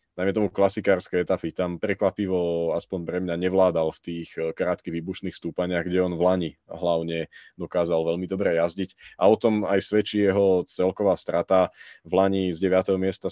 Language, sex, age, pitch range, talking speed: Slovak, male, 20-39, 85-100 Hz, 165 wpm